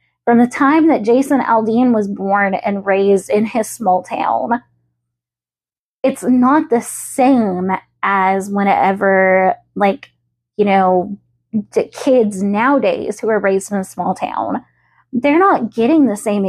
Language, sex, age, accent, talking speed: English, female, 10-29, American, 140 wpm